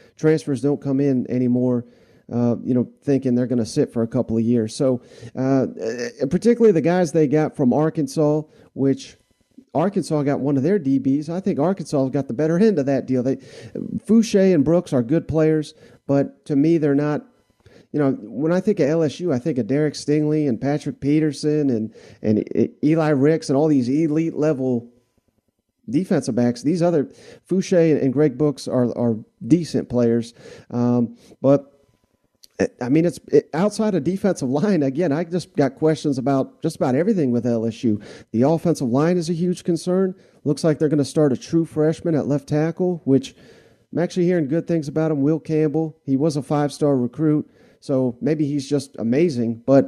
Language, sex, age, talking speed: English, male, 40-59, 185 wpm